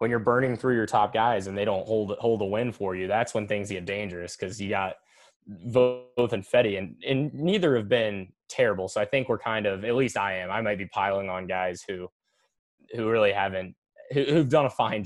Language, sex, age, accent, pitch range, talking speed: English, male, 10-29, American, 95-110 Hz, 230 wpm